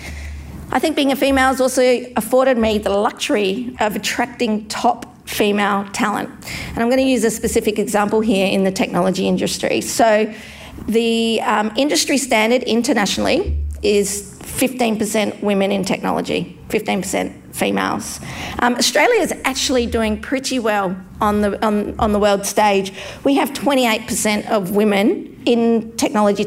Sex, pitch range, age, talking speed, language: female, 205-240 Hz, 40-59, 135 wpm, English